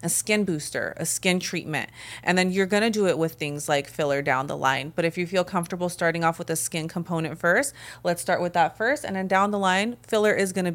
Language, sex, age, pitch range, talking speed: English, female, 30-49, 160-195 Hz, 245 wpm